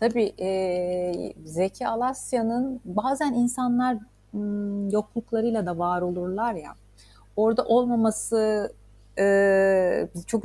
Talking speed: 90 wpm